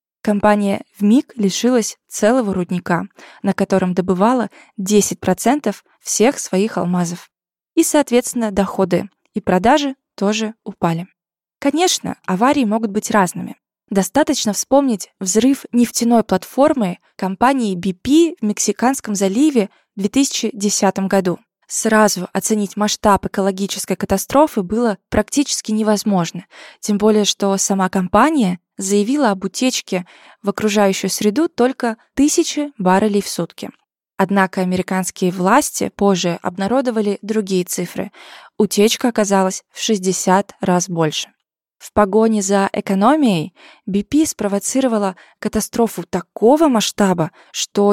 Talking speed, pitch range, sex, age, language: 105 wpm, 190-235 Hz, female, 20-39, Russian